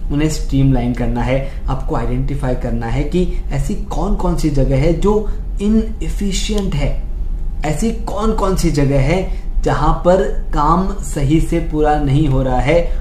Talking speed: 155 wpm